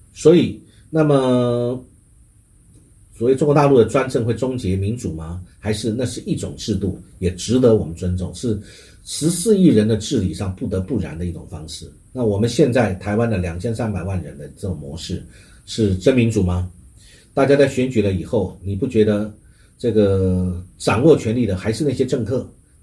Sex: male